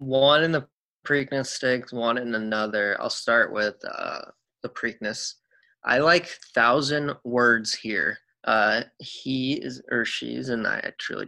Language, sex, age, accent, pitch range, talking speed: English, male, 20-39, American, 115-130 Hz, 145 wpm